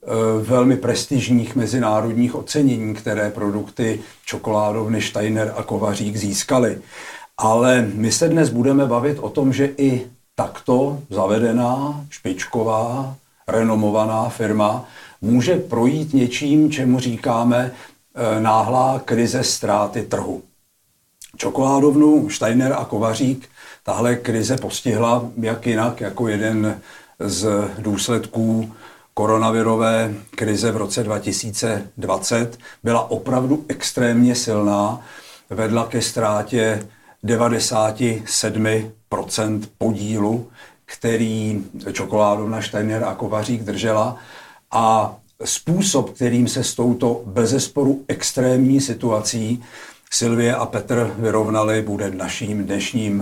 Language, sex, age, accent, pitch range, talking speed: Czech, male, 50-69, native, 110-125 Hz, 95 wpm